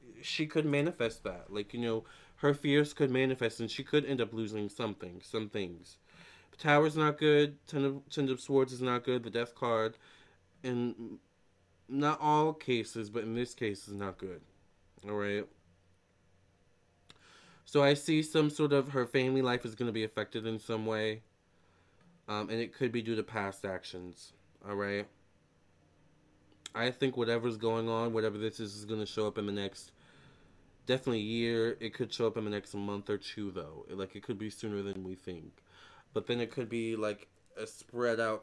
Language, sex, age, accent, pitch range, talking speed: English, male, 20-39, American, 100-130 Hz, 190 wpm